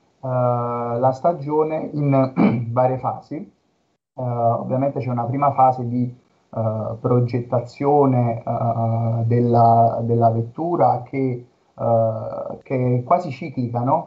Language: Italian